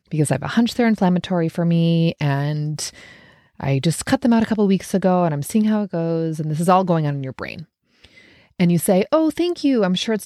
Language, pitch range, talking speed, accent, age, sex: English, 165-230 Hz, 255 wpm, American, 30-49, female